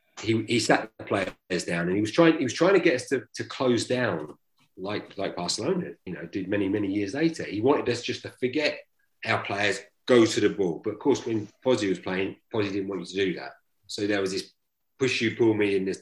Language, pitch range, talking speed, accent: English, 95-130 Hz, 245 wpm, British